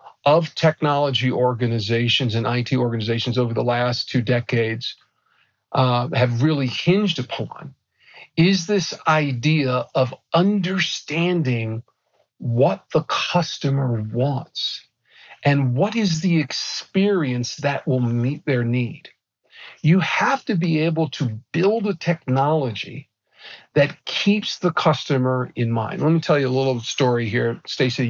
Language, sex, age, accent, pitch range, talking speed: English, male, 50-69, American, 120-155 Hz, 125 wpm